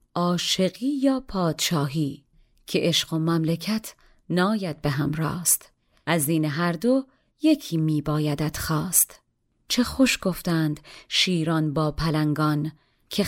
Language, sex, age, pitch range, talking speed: Persian, female, 30-49, 155-195 Hz, 115 wpm